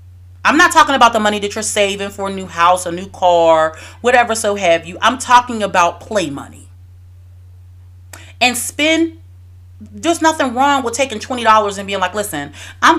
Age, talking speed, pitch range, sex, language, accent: 30-49, 175 wpm, 140-235 Hz, female, English, American